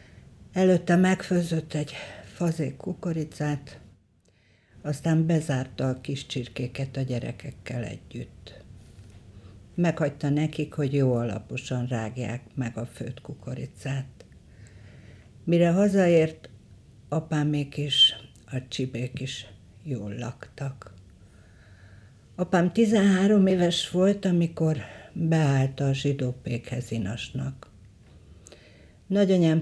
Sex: female